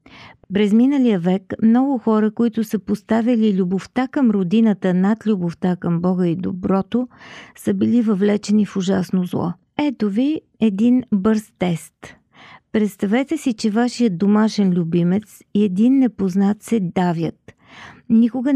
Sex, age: female, 40-59